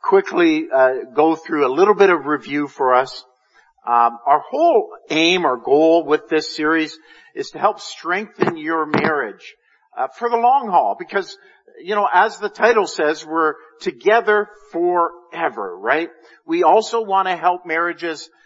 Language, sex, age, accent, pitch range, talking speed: English, male, 50-69, American, 150-230 Hz, 155 wpm